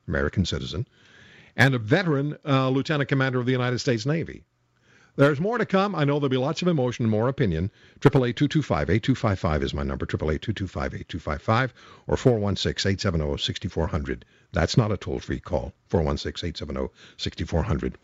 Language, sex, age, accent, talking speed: English, male, 60-79, American, 155 wpm